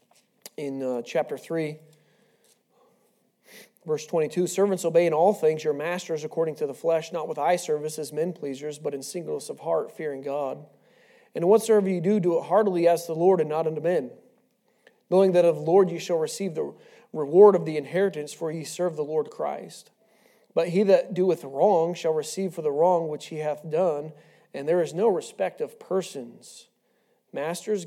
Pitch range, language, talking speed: 150-195 Hz, English, 185 wpm